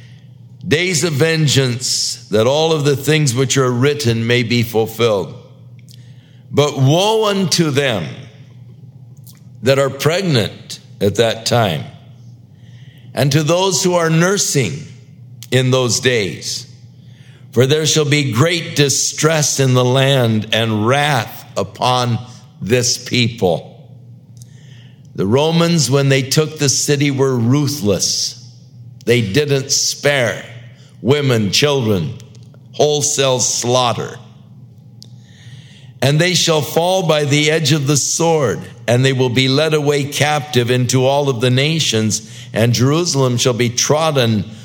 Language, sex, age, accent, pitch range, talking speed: English, male, 60-79, American, 125-145 Hz, 120 wpm